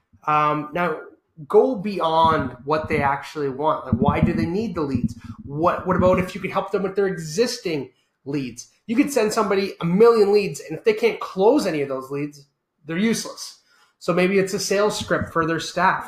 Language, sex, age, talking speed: English, male, 30-49, 200 wpm